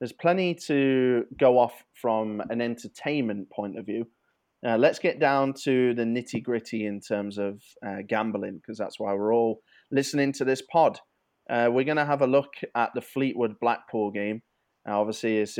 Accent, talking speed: British, 175 wpm